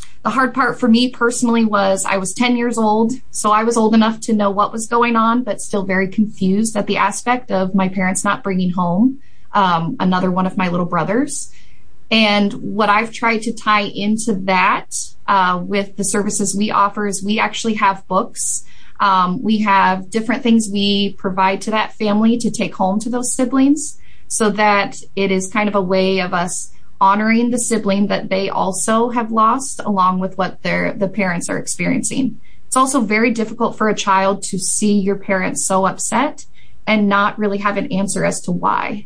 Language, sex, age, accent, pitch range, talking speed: English, female, 20-39, American, 190-225 Hz, 195 wpm